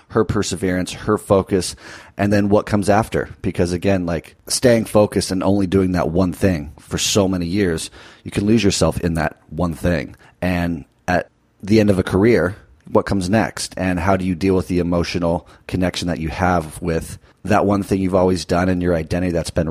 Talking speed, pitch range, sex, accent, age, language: 200 wpm, 85-105 Hz, male, American, 30-49, English